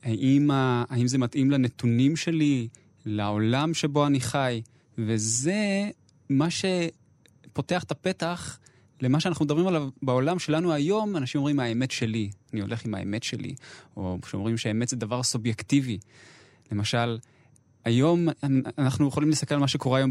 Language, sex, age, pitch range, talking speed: Hebrew, male, 20-39, 115-145 Hz, 145 wpm